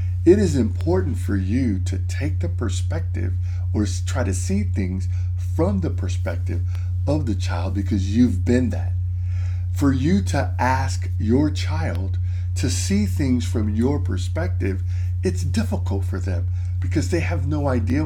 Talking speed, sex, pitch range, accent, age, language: 150 wpm, male, 90-95 Hz, American, 50-69, English